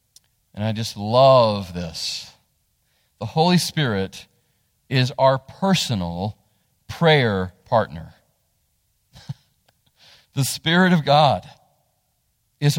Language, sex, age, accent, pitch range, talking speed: English, male, 40-59, American, 130-175 Hz, 85 wpm